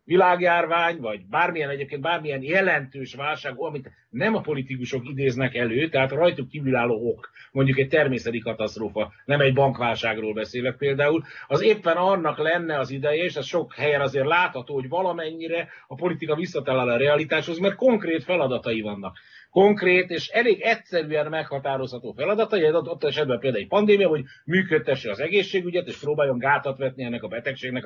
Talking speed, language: 155 wpm, Hungarian